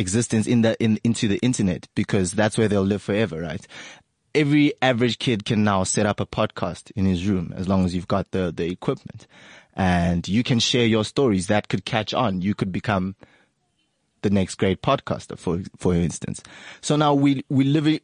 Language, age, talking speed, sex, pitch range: English, 20-39, 200 wpm, male, 100-125 Hz